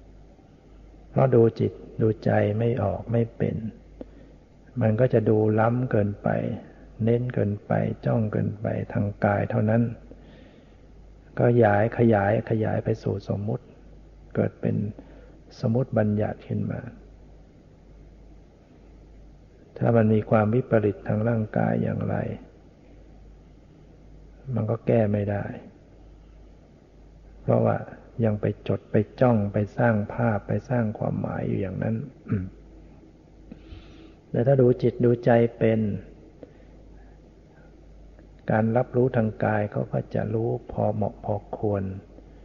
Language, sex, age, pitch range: Thai, male, 60-79, 100-120 Hz